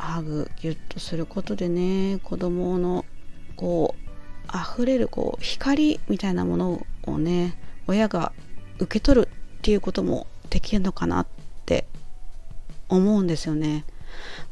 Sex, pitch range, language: female, 150-200 Hz, Japanese